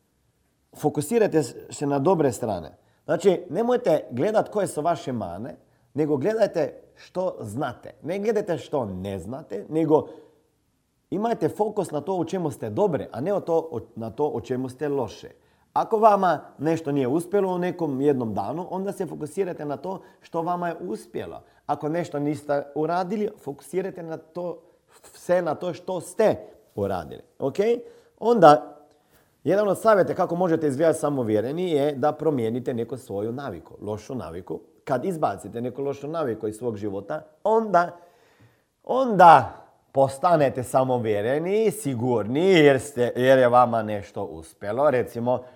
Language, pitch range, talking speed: Croatian, 120-175 Hz, 150 wpm